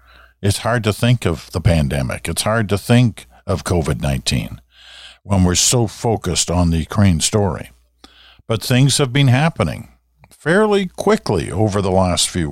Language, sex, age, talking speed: English, male, 50-69, 155 wpm